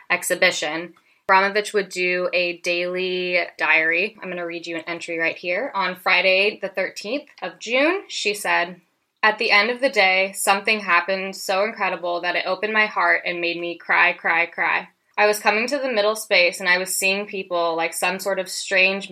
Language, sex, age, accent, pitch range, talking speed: English, female, 10-29, American, 170-195 Hz, 195 wpm